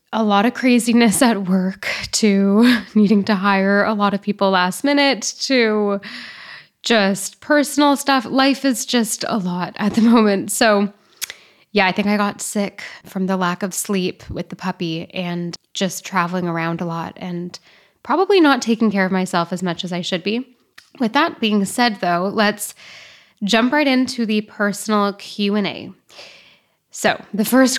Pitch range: 190-225 Hz